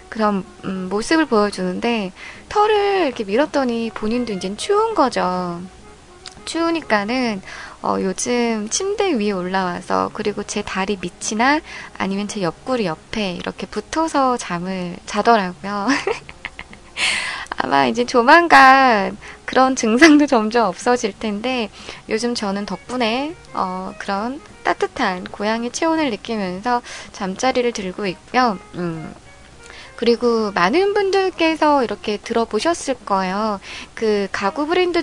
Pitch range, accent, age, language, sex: 195-275 Hz, native, 20-39, Korean, female